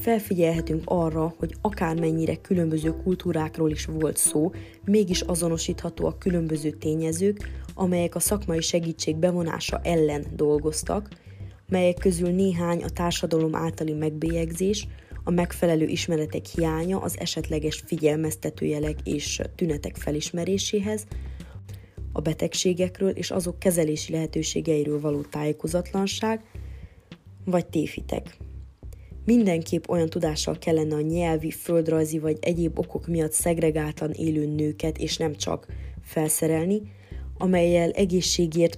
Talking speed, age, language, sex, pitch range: 105 wpm, 20-39, Hungarian, female, 150-175 Hz